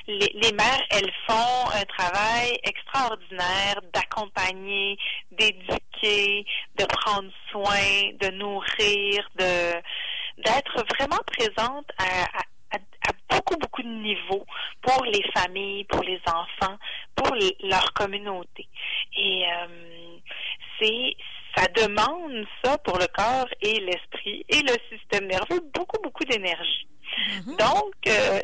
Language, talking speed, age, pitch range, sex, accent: French, 115 wpm, 30-49, 195-260 Hz, female, Canadian